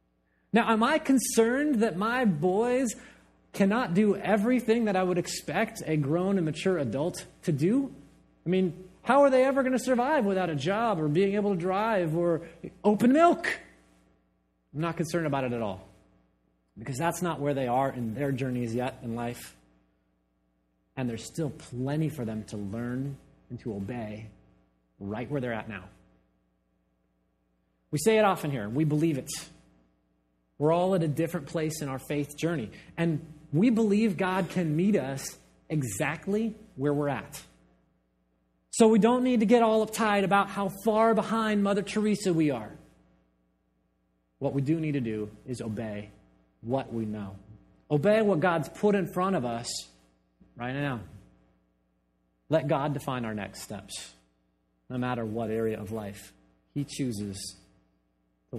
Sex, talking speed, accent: male, 160 wpm, American